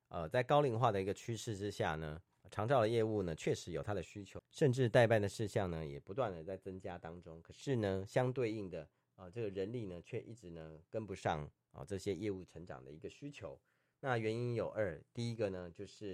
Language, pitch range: Chinese, 85-115 Hz